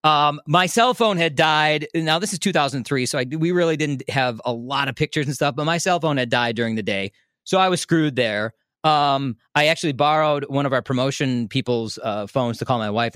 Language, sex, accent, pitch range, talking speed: English, male, American, 135-185 Hz, 235 wpm